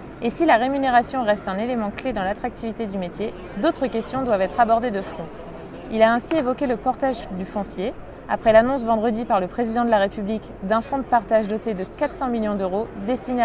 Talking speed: 205 wpm